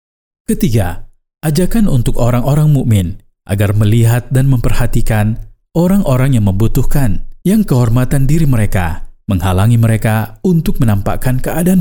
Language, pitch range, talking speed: Indonesian, 105-135 Hz, 105 wpm